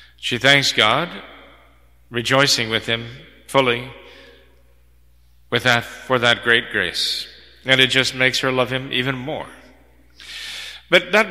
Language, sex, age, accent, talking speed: English, male, 40-59, American, 125 wpm